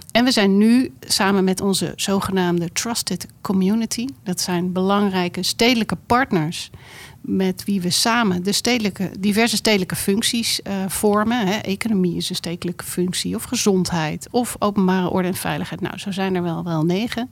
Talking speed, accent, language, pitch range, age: 150 wpm, Dutch, Dutch, 180-215 Hz, 40-59